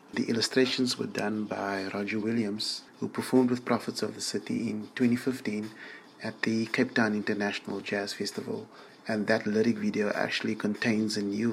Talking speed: 160 wpm